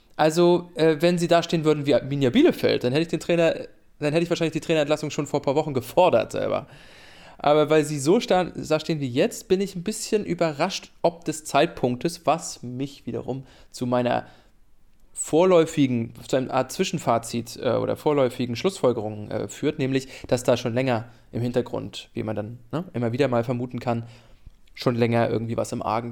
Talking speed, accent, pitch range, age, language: 190 wpm, German, 120-170 Hz, 20-39, English